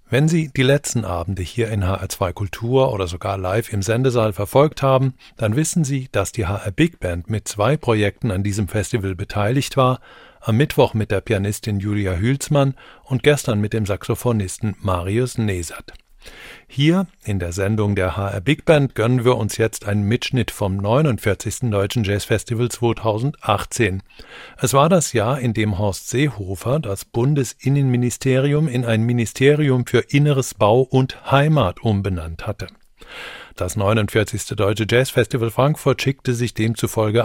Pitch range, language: 105-130 Hz, German